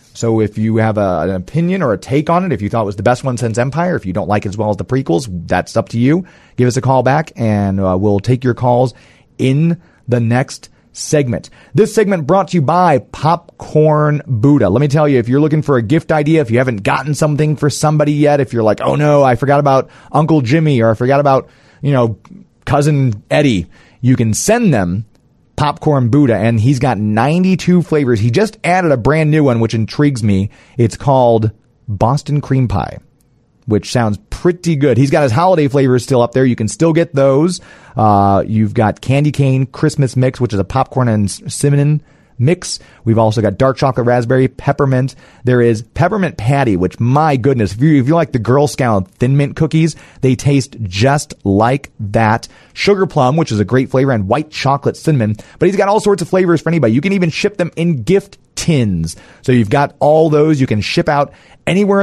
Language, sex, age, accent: English, male, 30-49, American